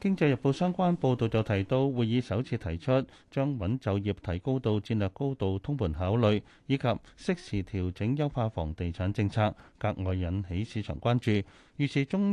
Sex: male